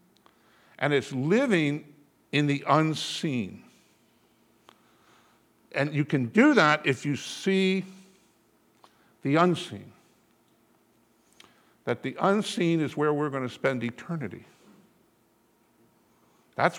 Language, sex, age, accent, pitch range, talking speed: English, male, 50-69, American, 115-160 Hz, 95 wpm